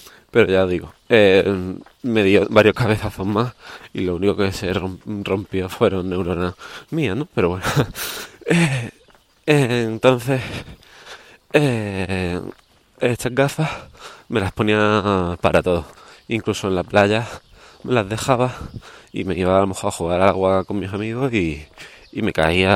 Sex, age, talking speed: male, 20-39, 140 wpm